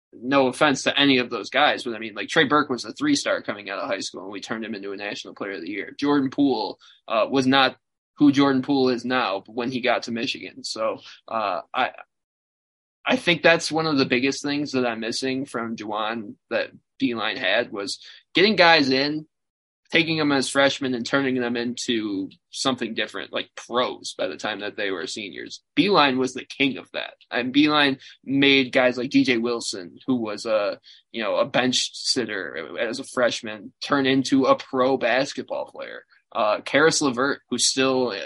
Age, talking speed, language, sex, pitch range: 20-39, 195 wpm, English, male, 120-145 Hz